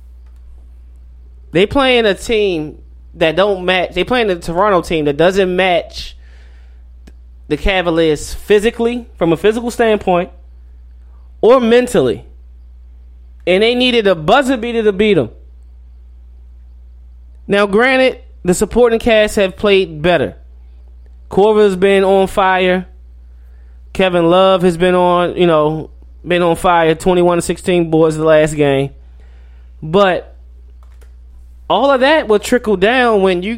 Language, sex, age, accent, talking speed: English, male, 20-39, American, 125 wpm